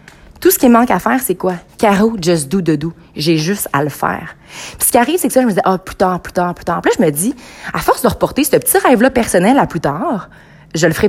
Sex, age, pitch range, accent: female, 30-49, 180-240 Hz, Canadian